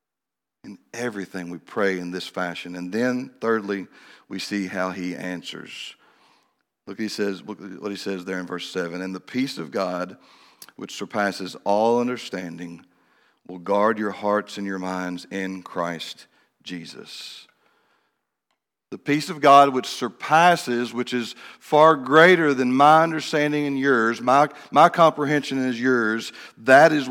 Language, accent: English, American